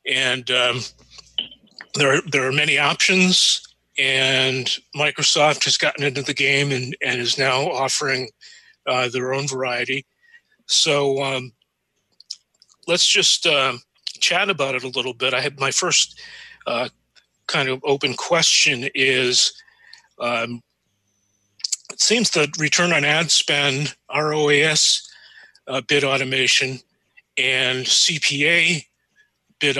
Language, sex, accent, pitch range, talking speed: English, male, American, 130-160 Hz, 120 wpm